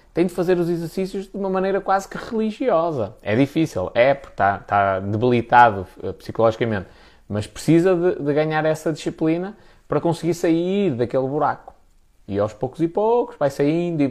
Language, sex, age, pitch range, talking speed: Portuguese, male, 20-39, 115-185 Hz, 165 wpm